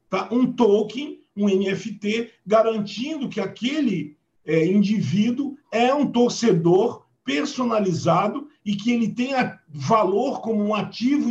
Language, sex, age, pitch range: Portuguese, male, 50-69, 175-235 Hz